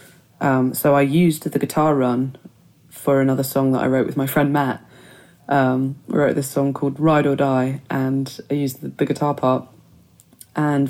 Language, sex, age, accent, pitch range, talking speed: English, female, 20-39, British, 130-150 Hz, 180 wpm